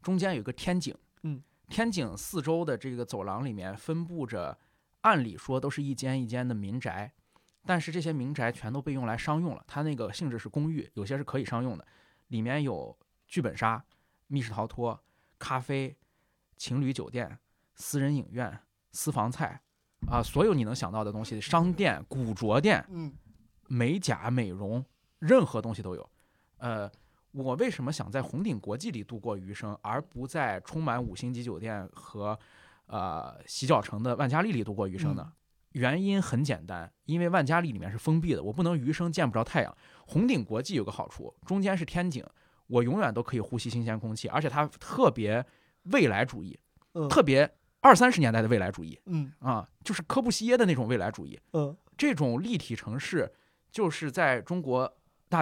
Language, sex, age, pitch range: Chinese, male, 20-39, 115-155 Hz